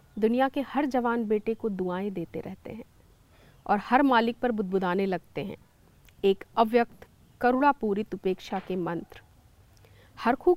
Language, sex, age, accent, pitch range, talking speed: Hindi, female, 40-59, native, 195-260 Hz, 135 wpm